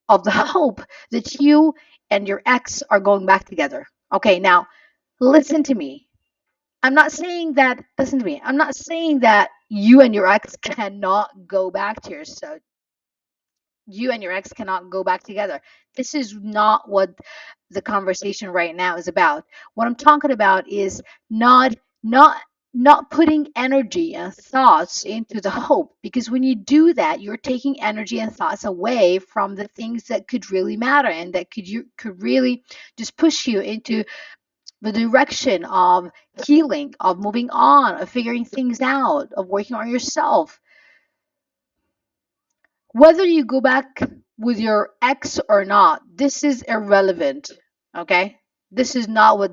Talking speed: 155 wpm